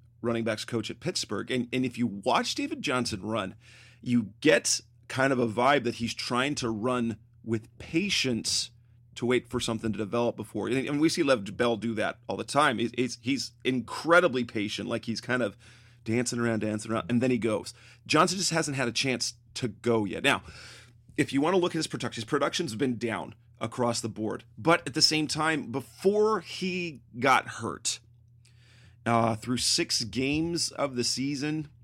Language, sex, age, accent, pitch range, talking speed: English, male, 30-49, American, 115-135 Hz, 190 wpm